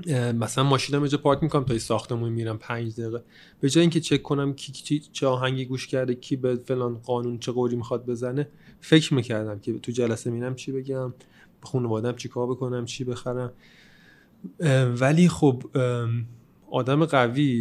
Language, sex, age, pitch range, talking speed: Persian, male, 30-49, 115-140 Hz, 160 wpm